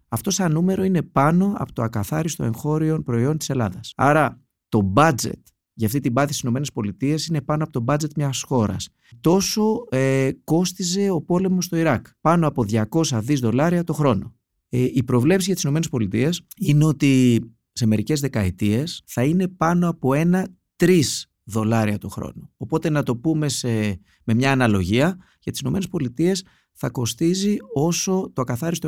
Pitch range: 115-170 Hz